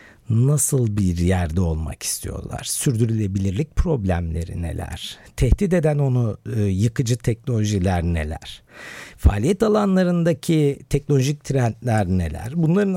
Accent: native